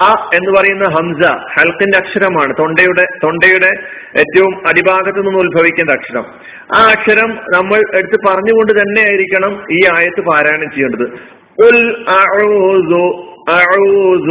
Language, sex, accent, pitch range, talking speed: Malayalam, male, native, 175-205 Hz, 90 wpm